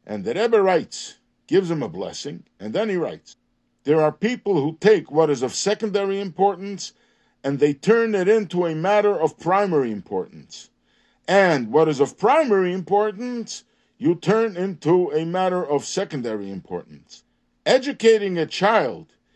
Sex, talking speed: male, 150 wpm